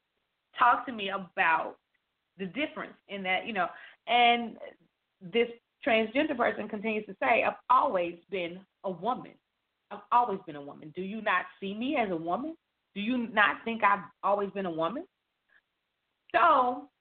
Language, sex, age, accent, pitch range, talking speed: English, female, 30-49, American, 190-265 Hz, 160 wpm